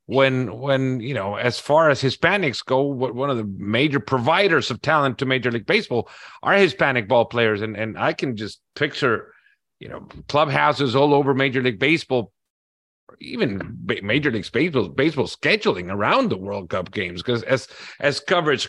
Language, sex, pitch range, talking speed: Spanish, male, 125-165 Hz, 165 wpm